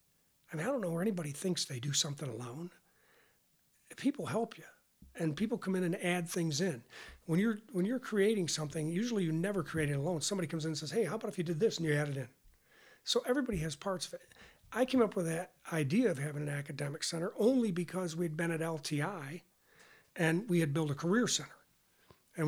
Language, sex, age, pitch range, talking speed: English, male, 40-59, 160-200 Hz, 220 wpm